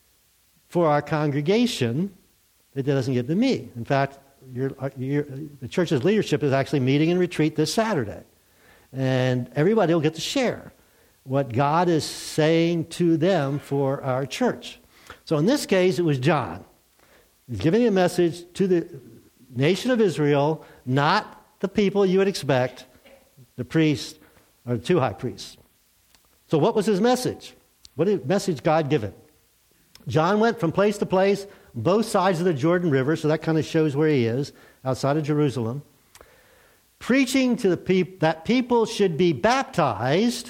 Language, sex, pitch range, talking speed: English, male, 135-190 Hz, 160 wpm